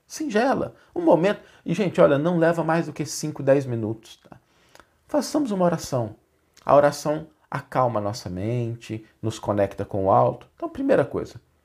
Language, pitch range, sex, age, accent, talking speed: Portuguese, 100-150 Hz, male, 40-59, Brazilian, 160 wpm